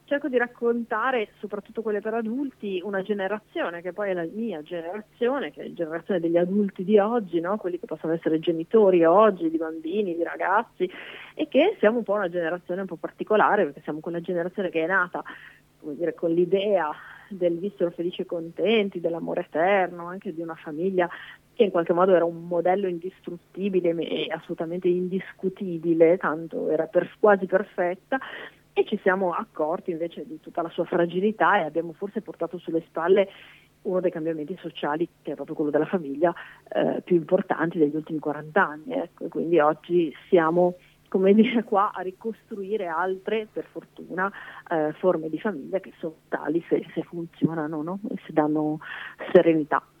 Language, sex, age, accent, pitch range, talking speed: Italian, female, 30-49, native, 165-200 Hz, 170 wpm